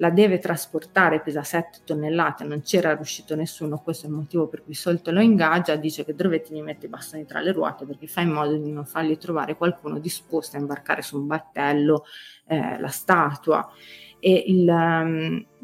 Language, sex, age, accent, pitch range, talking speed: Italian, female, 30-49, native, 150-170 Hz, 190 wpm